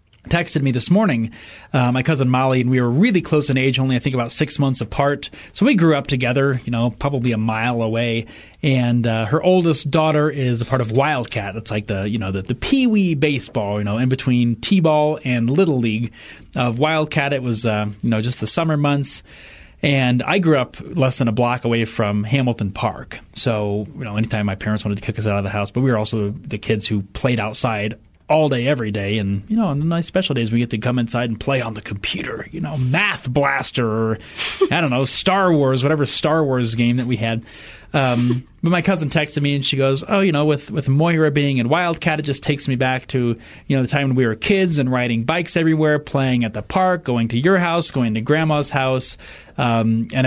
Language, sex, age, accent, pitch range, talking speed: English, male, 30-49, American, 115-150 Hz, 235 wpm